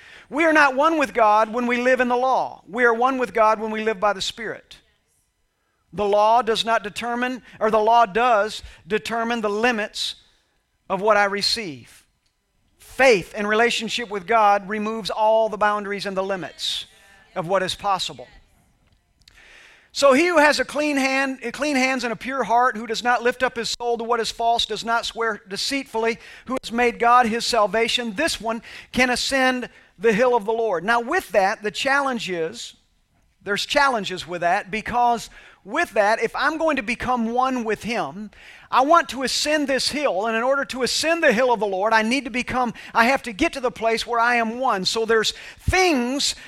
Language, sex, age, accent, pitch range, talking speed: English, male, 40-59, American, 220-265 Hz, 200 wpm